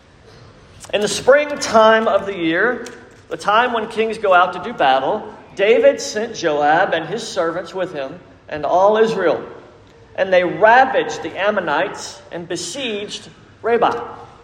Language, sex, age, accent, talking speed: English, male, 50-69, American, 140 wpm